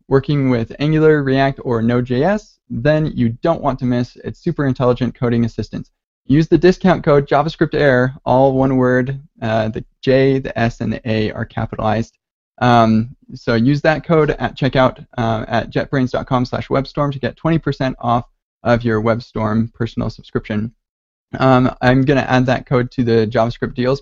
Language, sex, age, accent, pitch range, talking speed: English, male, 20-39, American, 115-140 Hz, 160 wpm